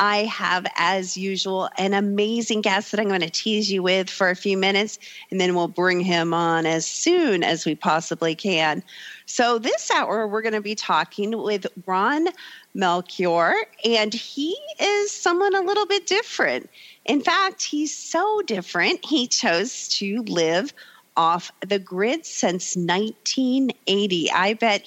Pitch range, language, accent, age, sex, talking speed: 170-225 Hz, English, American, 40-59, female, 155 wpm